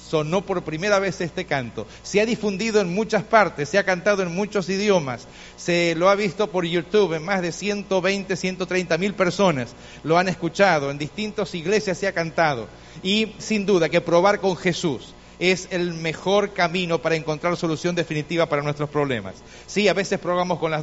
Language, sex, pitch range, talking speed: Spanish, male, 170-205 Hz, 185 wpm